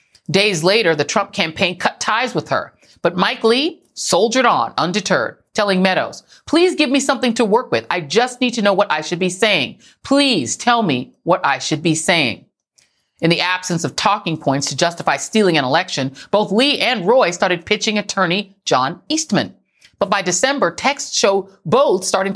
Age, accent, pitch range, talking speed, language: 40-59, American, 165-215 Hz, 185 wpm, English